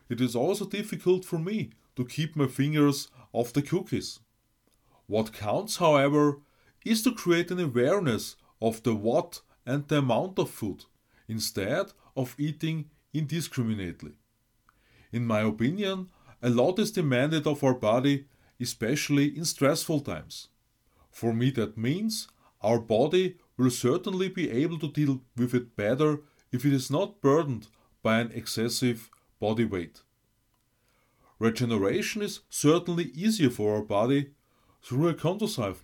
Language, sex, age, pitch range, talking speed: English, male, 30-49, 115-160 Hz, 135 wpm